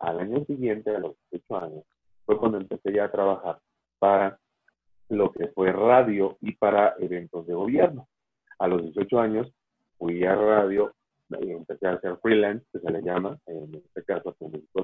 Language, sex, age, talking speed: Spanish, male, 30-49, 170 wpm